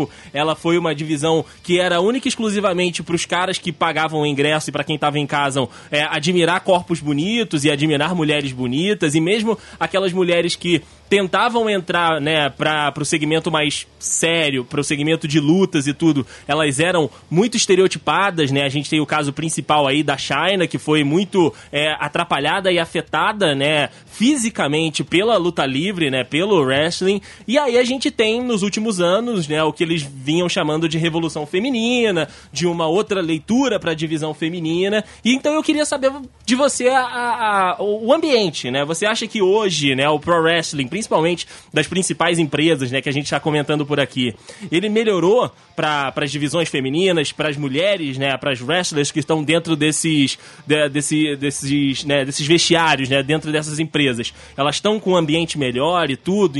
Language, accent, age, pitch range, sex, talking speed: Portuguese, Brazilian, 20-39, 150-190 Hz, male, 180 wpm